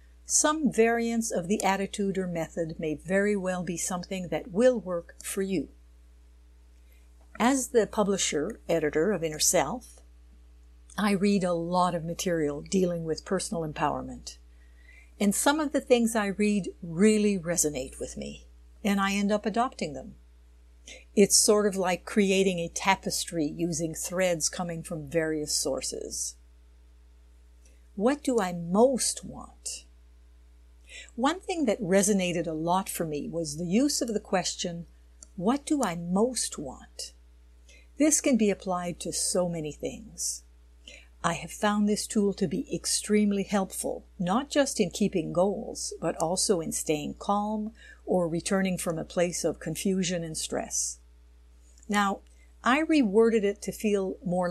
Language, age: English, 60-79